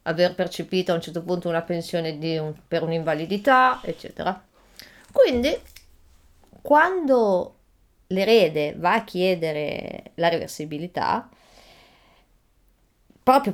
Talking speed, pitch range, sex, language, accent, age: 95 wpm, 170-230 Hz, female, Italian, native, 30-49